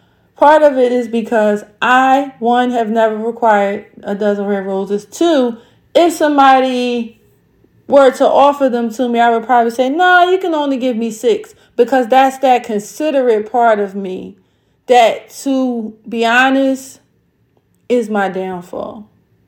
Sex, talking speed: female, 150 wpm